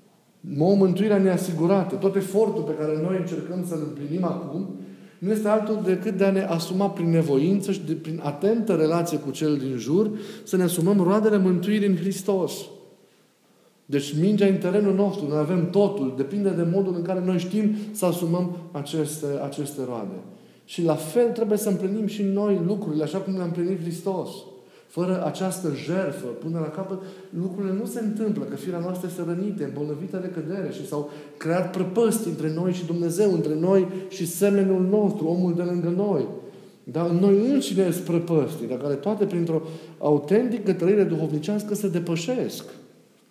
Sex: male